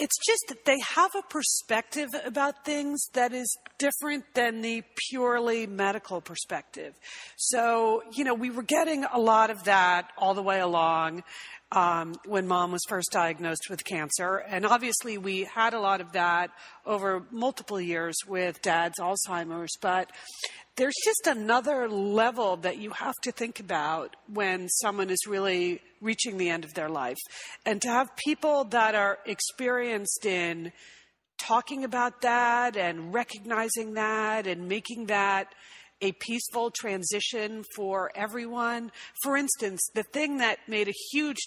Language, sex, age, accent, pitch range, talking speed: English, female, 40-59, American, 185-240 Hz, 150 wpm